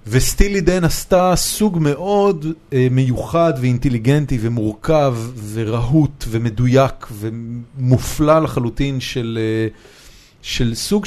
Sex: male